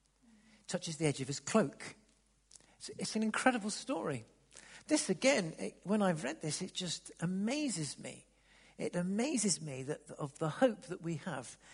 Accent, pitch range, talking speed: British, 155-215 Hz, 155 wpm